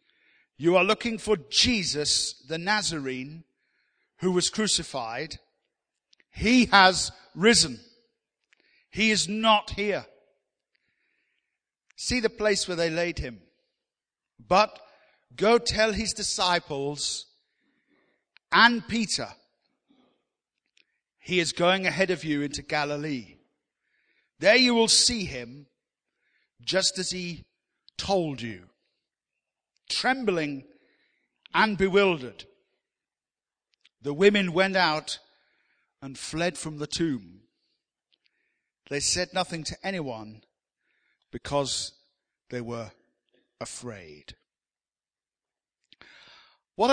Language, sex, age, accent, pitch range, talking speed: English, male, 50-69, British, 145-210 Hz, 90 wpm